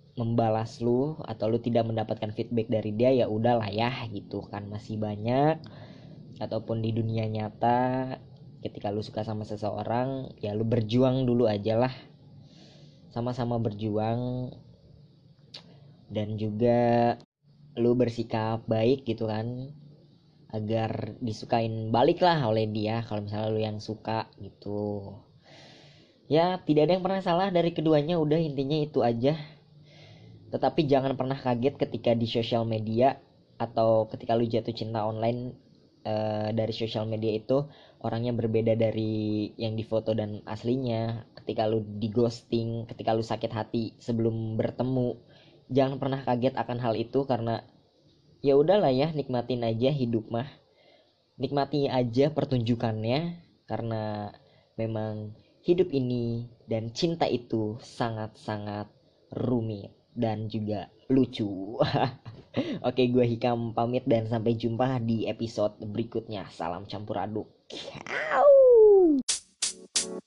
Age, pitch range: 20-39, 110-135 Hz